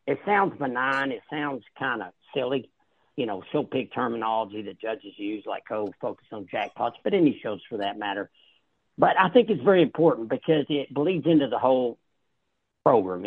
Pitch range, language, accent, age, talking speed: 120-155 Hz, English, American, 50-69, 180 wpm